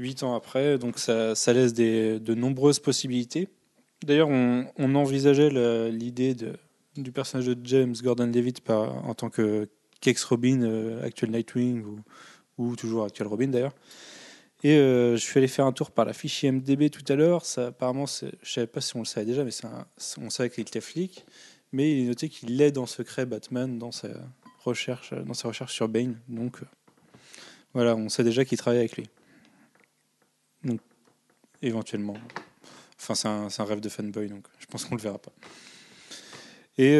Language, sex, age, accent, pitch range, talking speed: French, male, 20-39, French, 115-135 Hz, 190 wpm